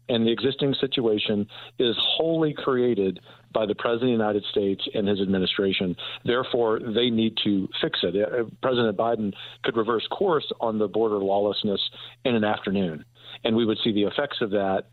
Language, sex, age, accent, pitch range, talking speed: English, male, 50-69, American, 100-125 Hz, 175 wpm